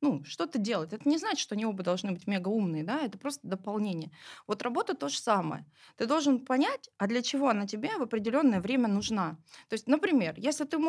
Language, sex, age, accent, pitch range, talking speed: Russian, female, 20-39, native, 195-275 Hz, 210 wpm